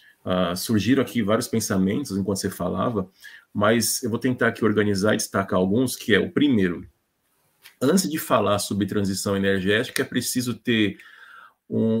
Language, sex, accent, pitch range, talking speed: Portuguese, male, Brazilian, 100-115 Hz, 155 wpm